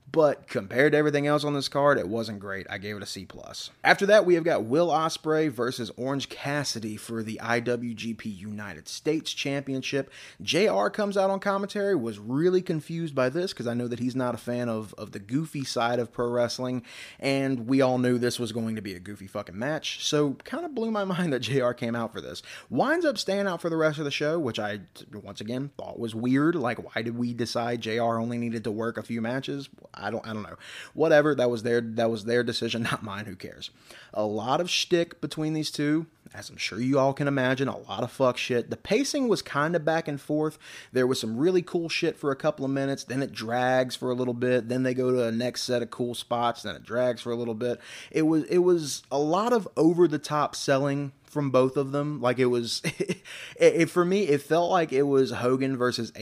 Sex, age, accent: male, 30-49, American